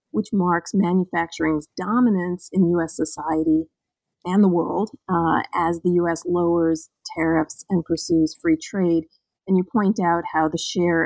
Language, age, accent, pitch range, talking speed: English, 40-59, American, 165-210 Hz, 145 wpm